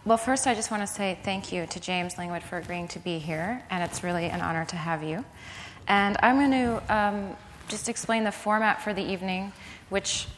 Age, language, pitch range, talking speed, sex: 20-39, English, 175-200 Hz, 220 wpm, female